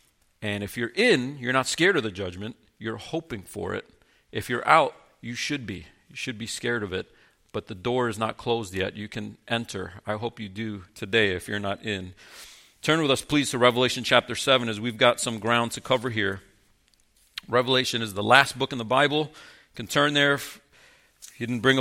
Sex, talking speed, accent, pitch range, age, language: male, 210 wpm, American, 105-130 Hz, 40-59, English